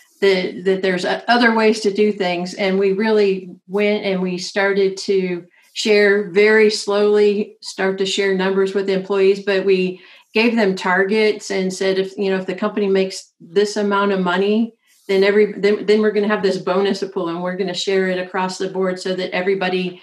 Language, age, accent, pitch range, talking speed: English, 50-69, American, 190-210 Hz, 195 wpm